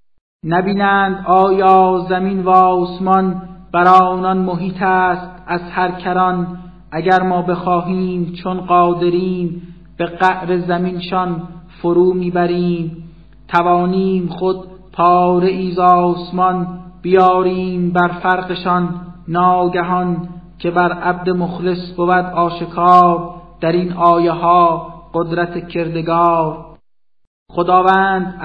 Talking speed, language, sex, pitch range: 90 wpm, Persian, male, 175-185 Hz